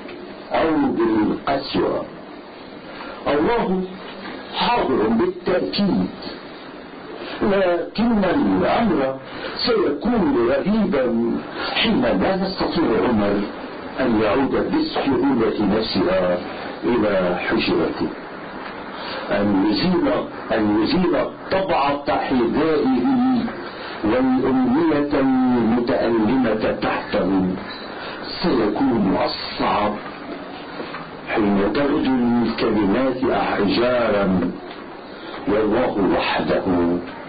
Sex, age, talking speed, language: male, 50-69, 60 wpm, Arabic